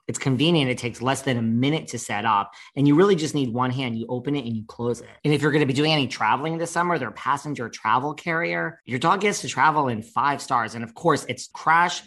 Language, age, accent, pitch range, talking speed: English, 40-59, American, 115-150 Hz, 265 wpm